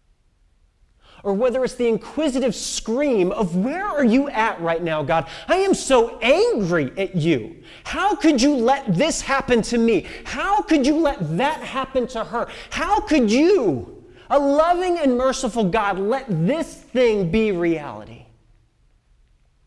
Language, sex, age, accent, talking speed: English, male, 30-49, American, 150 wpm